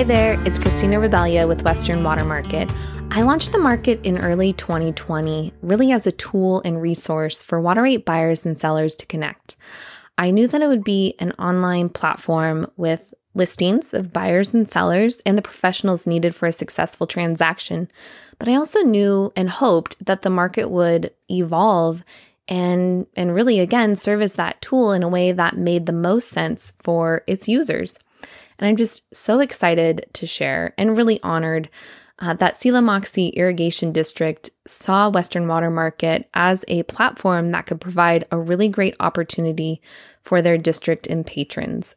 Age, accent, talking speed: 20-39, American, 165 wpm